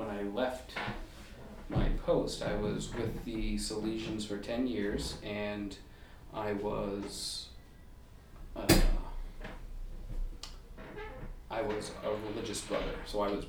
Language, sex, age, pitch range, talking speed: English, male, 30-49, 95-105 Hz, 110 wpm